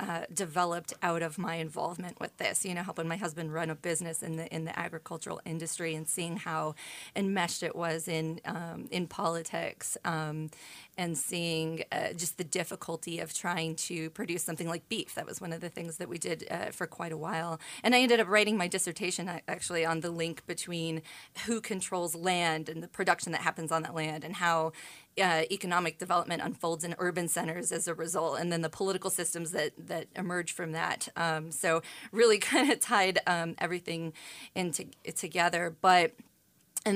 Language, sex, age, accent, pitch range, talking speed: English, female, 30-49, American, 165-185 Hz, 190 wpm